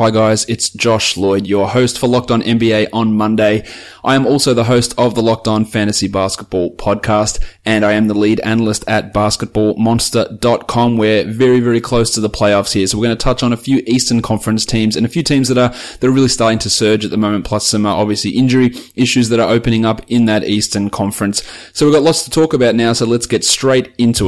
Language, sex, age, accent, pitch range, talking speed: English, male, 20-39, Australian, 105-120 Hz, 230 wpm